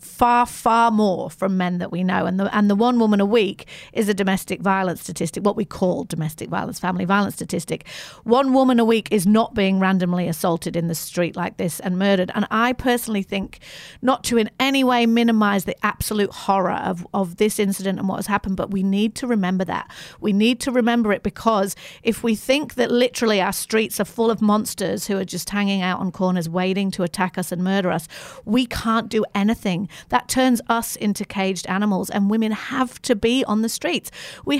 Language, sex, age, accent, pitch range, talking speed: English, female, 40-59, British, 190-240 Hz, 210 wpm